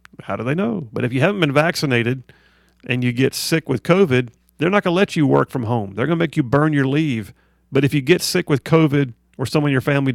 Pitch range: 120-155 Hz